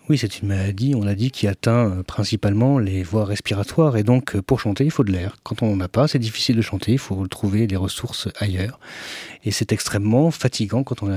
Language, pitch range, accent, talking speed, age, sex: French, 100-130 Hz, French, 230 wpm, 40-59, male